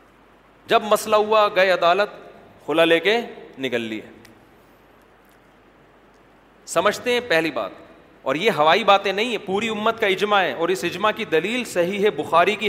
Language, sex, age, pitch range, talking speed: Urdu, male, 40-59, 165-210 Hz, 160 wpm